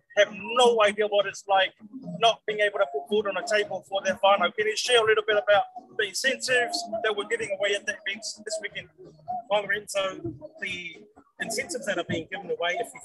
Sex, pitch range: male, 190-280 Hz